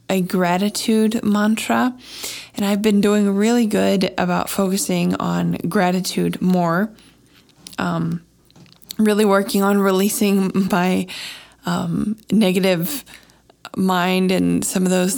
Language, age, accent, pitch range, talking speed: English, 20-39, American, 175-200 Hz, 105 wpm